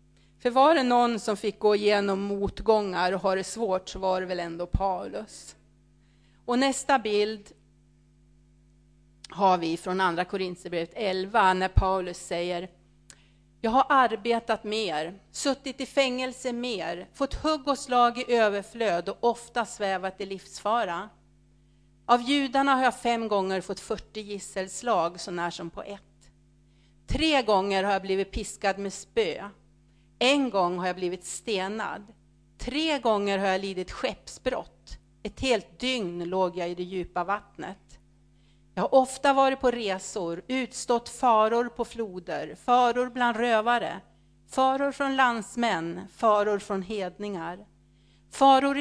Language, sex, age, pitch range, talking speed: Swedish, female, 40-59, 190-245 Hz, 140 wpm